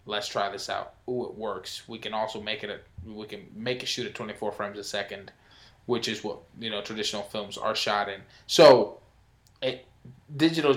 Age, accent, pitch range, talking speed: 20-39, American, 110-140 Hz, 200 wpm